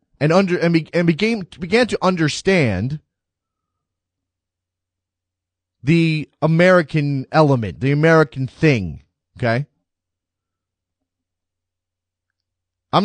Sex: male